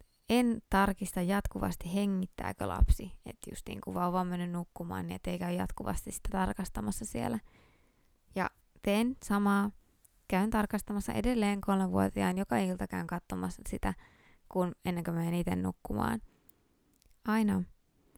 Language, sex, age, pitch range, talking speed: Finnish, female, 20-39, 170-210 Hz, 120 wpm